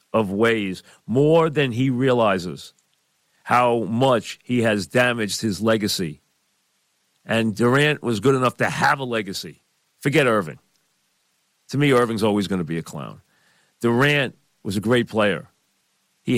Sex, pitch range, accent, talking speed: male, 100-125 Hz, American, 145 wpm